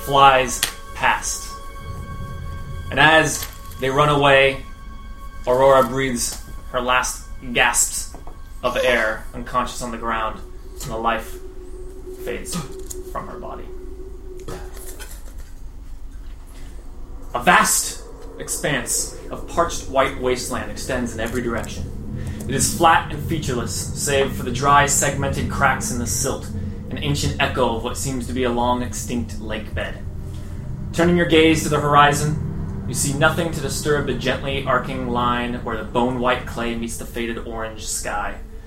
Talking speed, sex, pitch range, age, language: 135 wpm, male, 105-150 Hz, 20-39, English